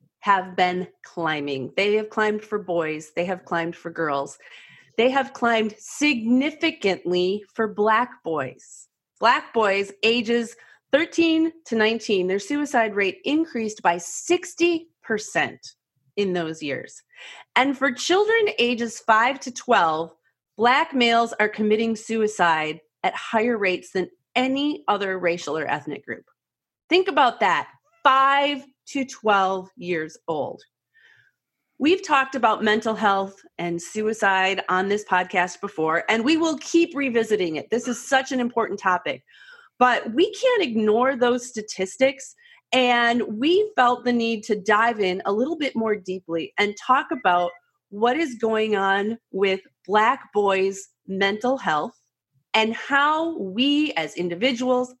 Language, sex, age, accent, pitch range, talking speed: English, female, 30-49, American, 190-265 Hz, 135 wpm